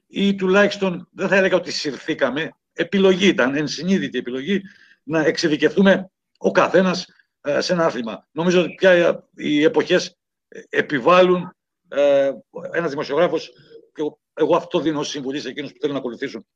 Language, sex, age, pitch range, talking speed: Greek, male, 60-79, 135-190 Hz, 140 wpm